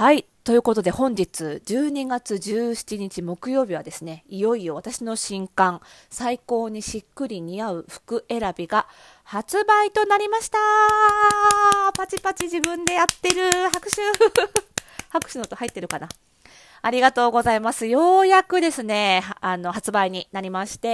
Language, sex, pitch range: Japanese, female, 185-260 Hz